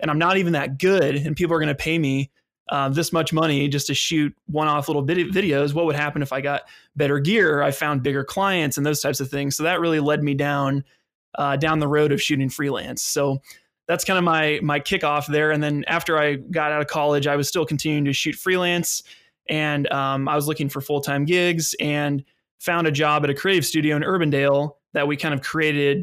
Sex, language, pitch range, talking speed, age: male, English, 140-155 Hz, 230 wpm, 20-39